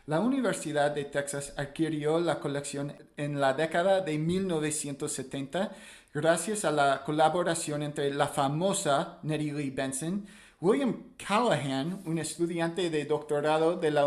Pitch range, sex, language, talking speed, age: 145-165 Hz, male, English, 130 wpm, 40-59